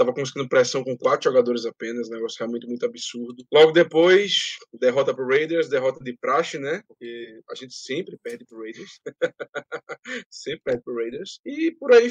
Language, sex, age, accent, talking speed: Portuguese, male, 20-39, Brazilian, 175 wpm